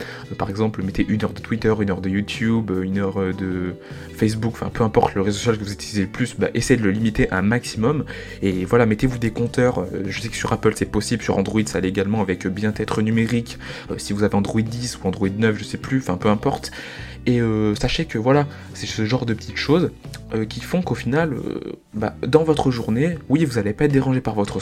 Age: 20-39